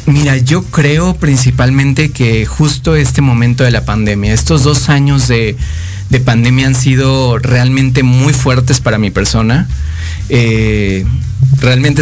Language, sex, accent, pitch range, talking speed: Spanish, male, Mexican, 115-135 Hz, 135 wpm